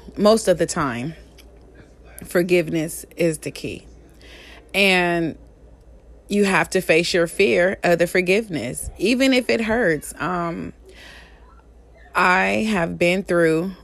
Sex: female